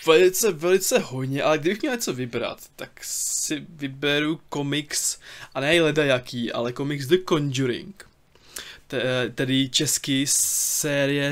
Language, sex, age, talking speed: Czech, male, 20-39, 115 wpm